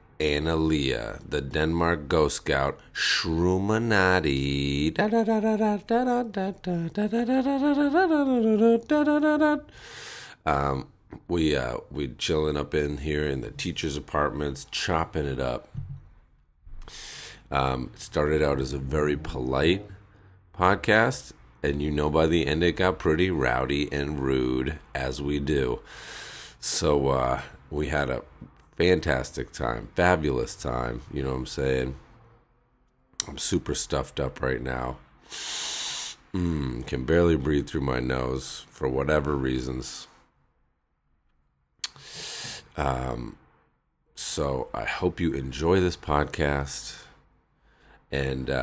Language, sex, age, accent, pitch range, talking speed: English, male, 40-59, American, 70-90 Hz, 105 wpm